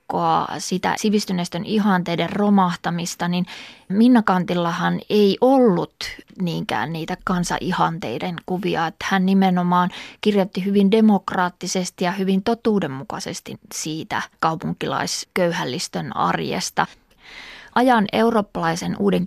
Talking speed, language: 85 wpm, Finnish